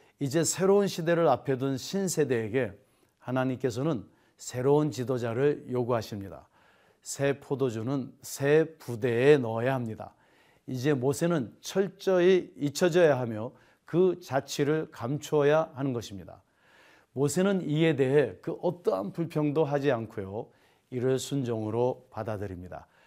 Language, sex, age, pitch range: Korean, male, 40-59, 125-160 Hz